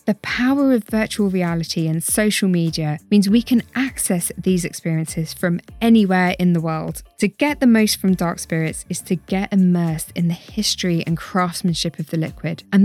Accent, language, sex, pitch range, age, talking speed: British, English, female, 165-220 Hz, 20-39, 180 wpm